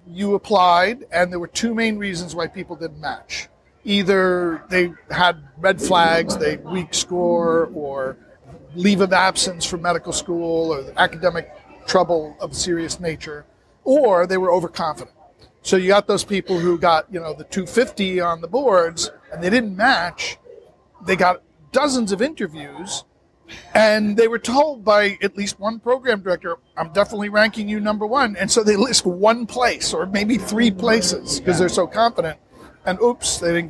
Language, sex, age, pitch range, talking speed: English, male, 40-59, 170-205 Hz, 170 wpm